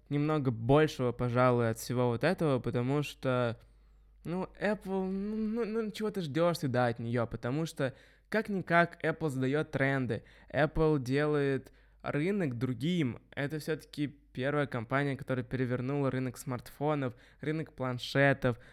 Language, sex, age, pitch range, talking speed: Russian, male, 20-39, 130-170 Hz, 130 wpm